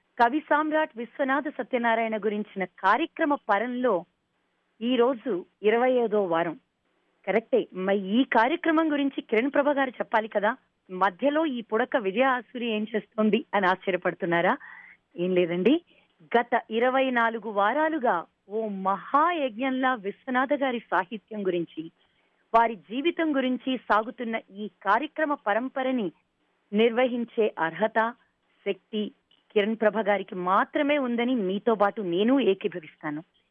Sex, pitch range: female, 205-270 Hz